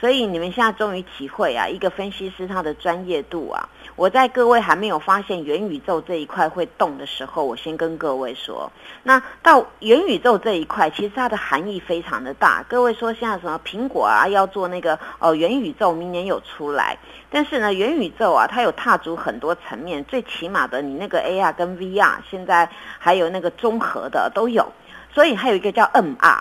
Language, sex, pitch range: Chinese, female, 180-260 Hz